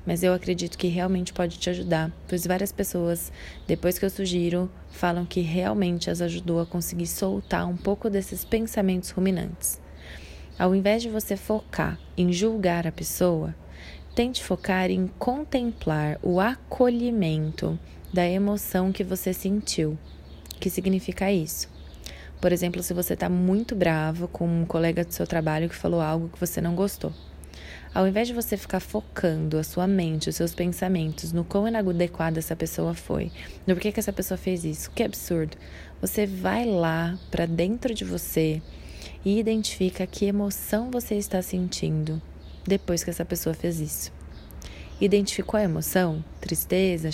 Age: 20-39